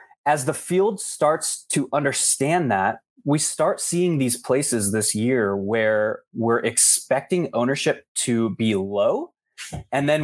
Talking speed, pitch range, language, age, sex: 135 wpm, 115-140 Hz, English, 20-39, male